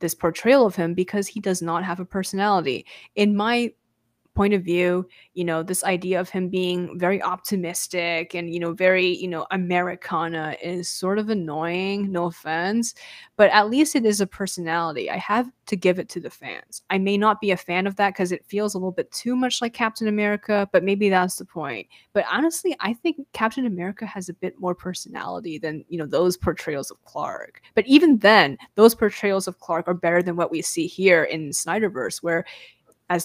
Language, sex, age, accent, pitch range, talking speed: English, female, 10-29, American, 175-210 Hz, 205 wpm